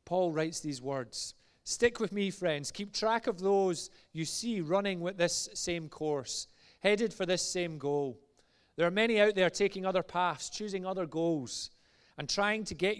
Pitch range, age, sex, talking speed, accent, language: 140-185 Hz, 30-49, male, 180 wpm, British, English